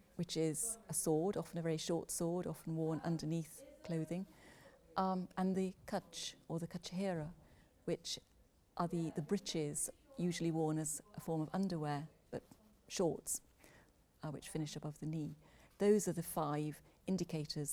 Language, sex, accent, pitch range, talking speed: English, female, British, 155-180 Hz, 150 wpm